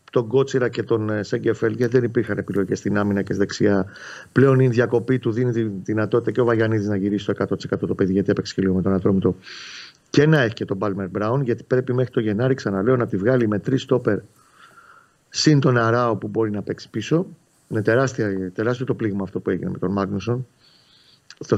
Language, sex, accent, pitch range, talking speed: Greek, male, native, 105-130 Hz, 210 wpm